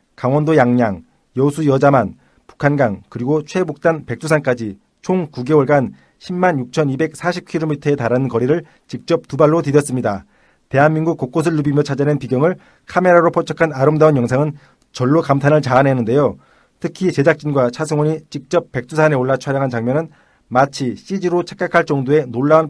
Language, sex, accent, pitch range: Korean, male, native, 135-165 Hz